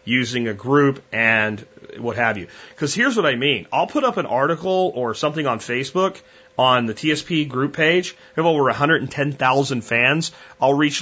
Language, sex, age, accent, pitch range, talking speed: English, male, 30-49, American, 130-165 Hz, 180 wpm